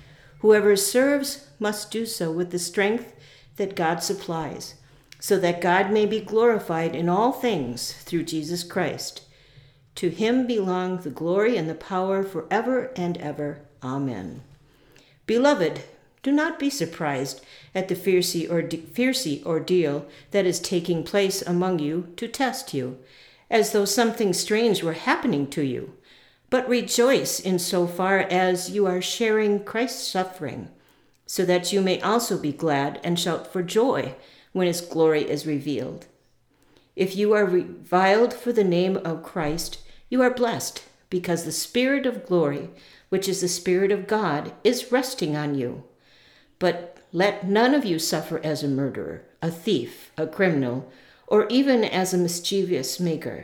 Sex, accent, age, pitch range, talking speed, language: female, American, 50-69, 155-210 Hz, 150 wpm, English